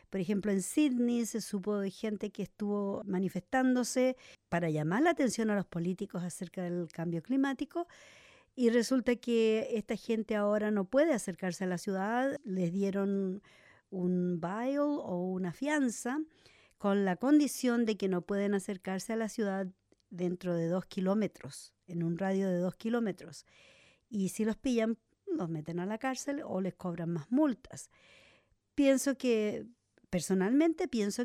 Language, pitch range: English, 185-240 Hz